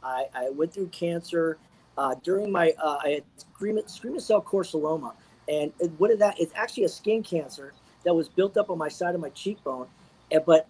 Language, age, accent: English, 40-59, American